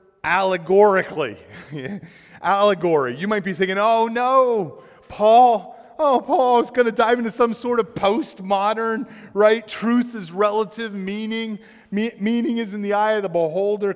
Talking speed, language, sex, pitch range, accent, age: 140 wpm, English, male, 135-215 Hz, American, 30-49